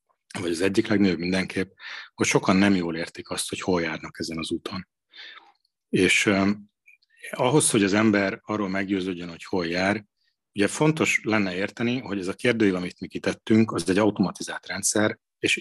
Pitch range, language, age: 95-110 Hz, Hungarian, 30-49